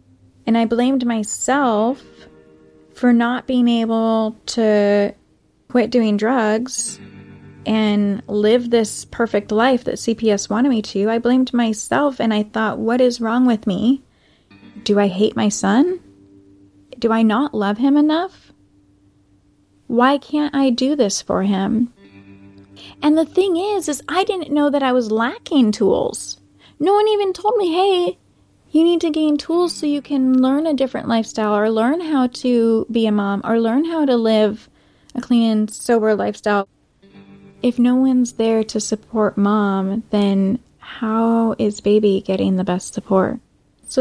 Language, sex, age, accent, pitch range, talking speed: English, female, 30-49, American, 200-255 Hz, 155 wpm